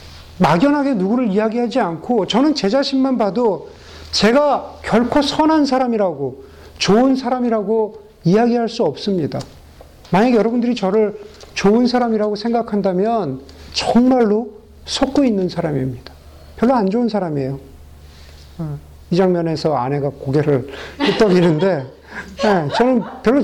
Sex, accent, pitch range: male, native, 145-225 Hz